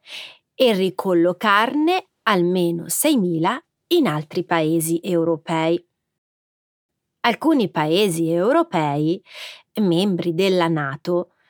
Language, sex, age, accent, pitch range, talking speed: Italian, female, 30-49, native, 165-250 Hz, 75 wpm